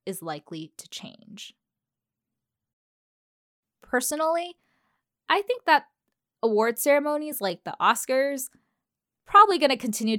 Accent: American